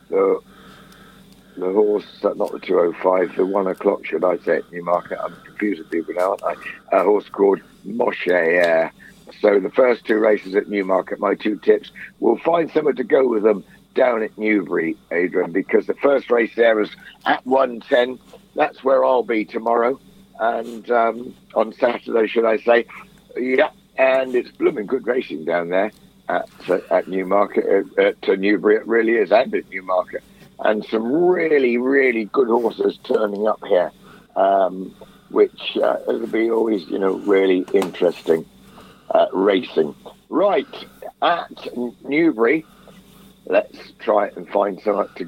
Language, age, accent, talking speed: English, 60-79, British, 155 wpm